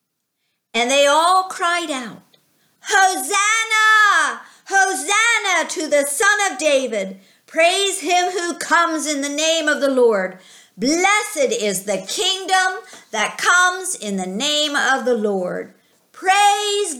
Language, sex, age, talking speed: English, female, 50-69, 125 wpm